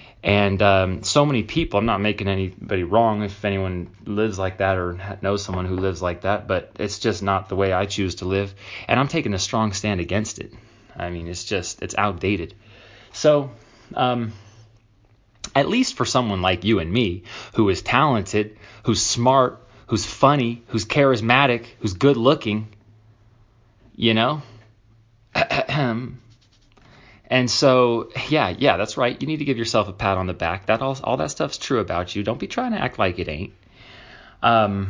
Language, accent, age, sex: English, American, 30-49, male